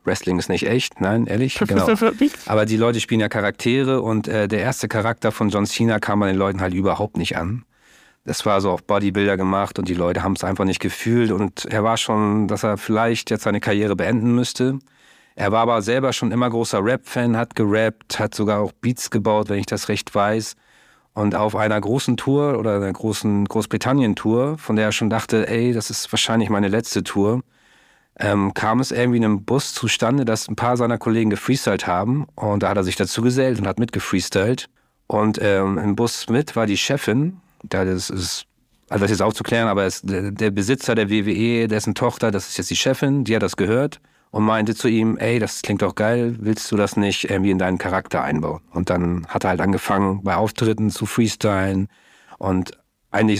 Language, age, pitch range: German, 40-59, 100-115 Hz